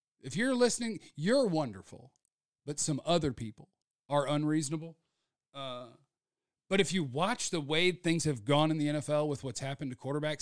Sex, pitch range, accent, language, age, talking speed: male, 135-175 Hz, American, English, 40-59, 165 wpm